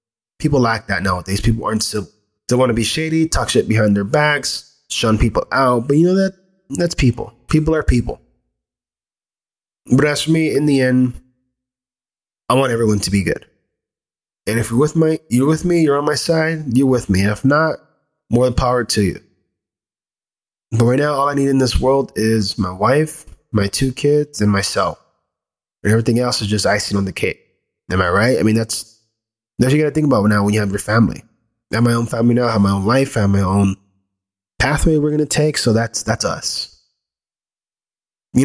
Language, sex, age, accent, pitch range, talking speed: English, male, 20-39, American, 105-135 Hz, 205 wpm